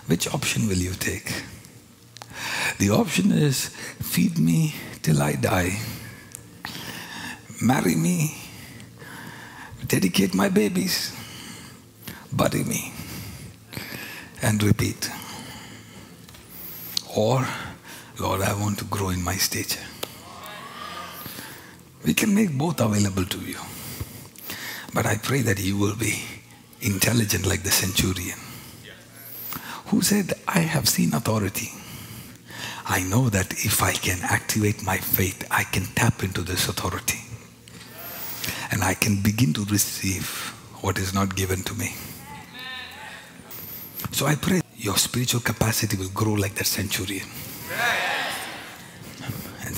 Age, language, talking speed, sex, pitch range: 60-79, English, 115 wpm, male, 95-120 Hz